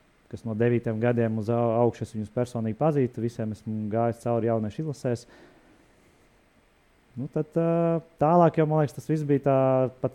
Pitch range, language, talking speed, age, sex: 110-135 Hz, English, 160 wpm, 20-39, male